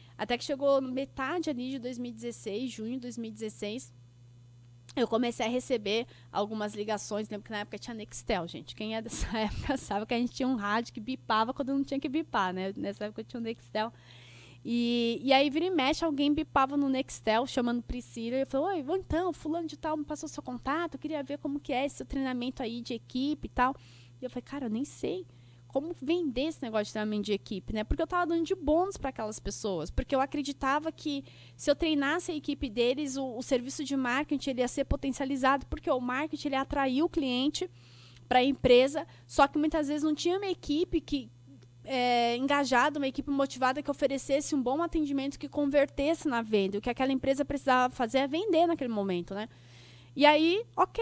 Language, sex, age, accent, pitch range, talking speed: Portuguese, female, 20-39, Brazilian, 220-290 Hz, 205 wpm